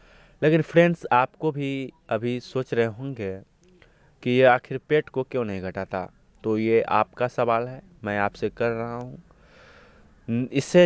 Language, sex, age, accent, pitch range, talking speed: Hindi, male, 30-49, native, 105-135 Hz, 150 wpm